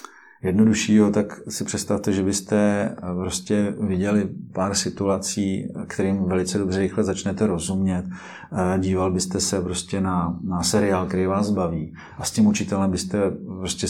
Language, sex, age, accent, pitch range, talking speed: Czech, male, 40-59, native, 95-105 Hz, 140 wpm